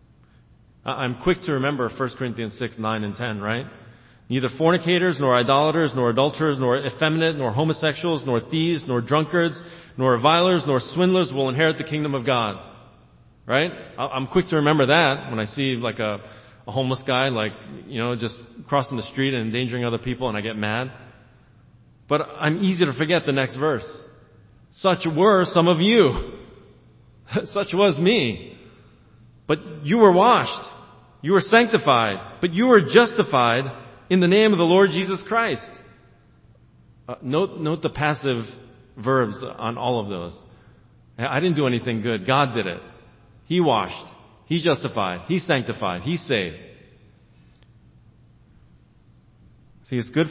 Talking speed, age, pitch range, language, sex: 155 wpm, 30-49, 115-160 Hz, English, male